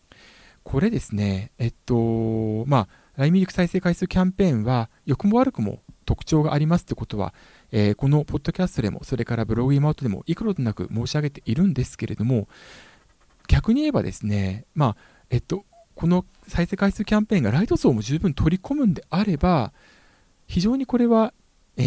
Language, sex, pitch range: Japanese, male, 110-180 Hz